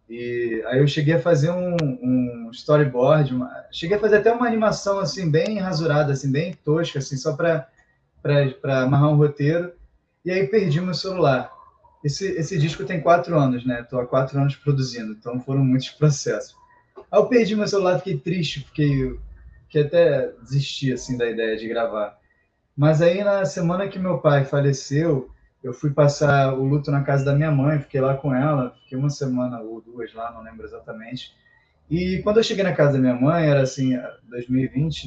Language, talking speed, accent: Portuguese, 185 wpm, Brazilian